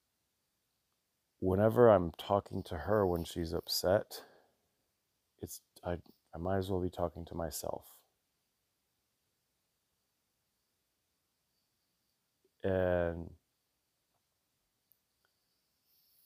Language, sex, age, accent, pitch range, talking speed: English, male, 40-59, American, 85-105 Hz, 70 wpm